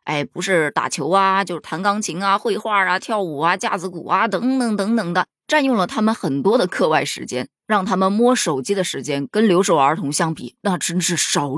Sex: female